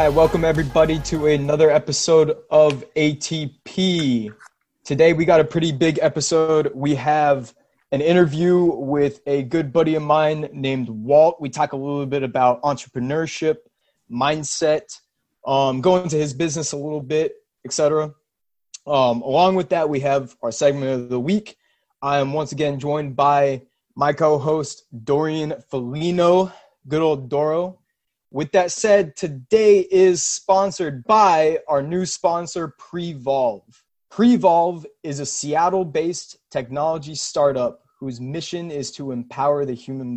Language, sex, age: English, male, 20-39